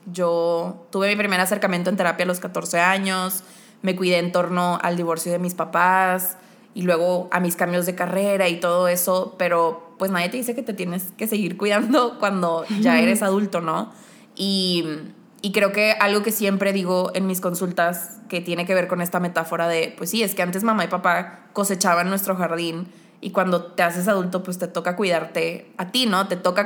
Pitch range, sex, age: 175-200 Hz, female, 20-39